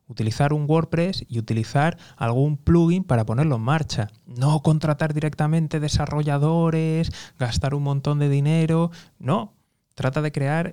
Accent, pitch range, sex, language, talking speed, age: Spanish, 115-150 Hz, male, Spanish, 135 wpm, 20-39